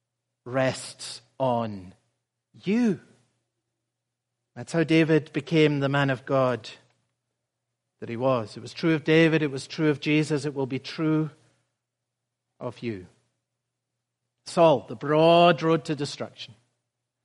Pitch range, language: 130-170 Hz, English